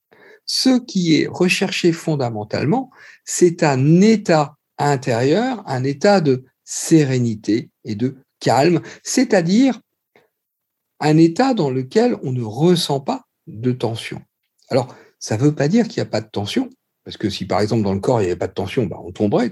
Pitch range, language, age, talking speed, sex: 130-185 Hz, French, 50-69, 170 wpm, male